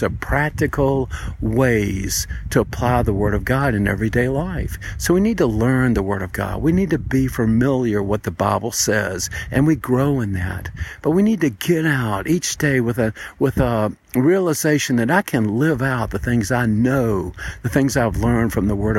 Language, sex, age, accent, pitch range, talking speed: English, male, 50-69, American, 100-130 Hz, 200 wpm